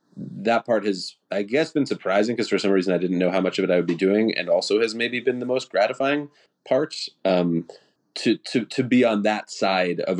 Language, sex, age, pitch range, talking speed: English, male, 30-49, 90-105 Hz, 235 wpm